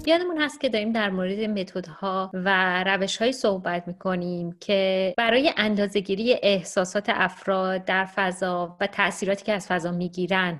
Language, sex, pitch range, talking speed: Persian, female, 180-210 Hz, 135 wpm